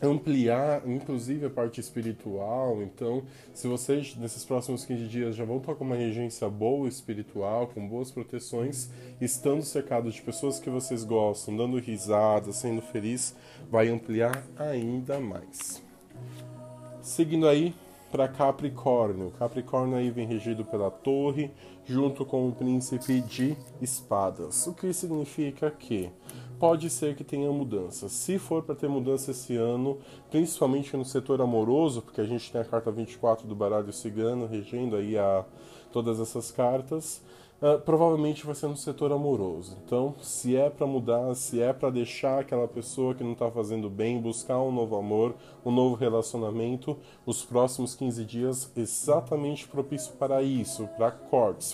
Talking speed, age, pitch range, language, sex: 150 wpm, 20-39, 115-140 Hz, Portuguese, male